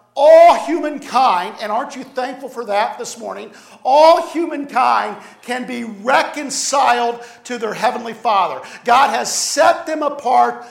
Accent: American